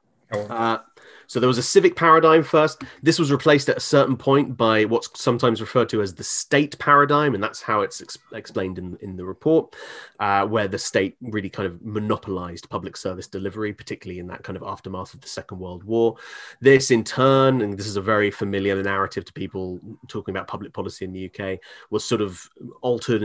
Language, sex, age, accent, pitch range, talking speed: English, male, 30-49, British, 95-125 Hz, 200 wpm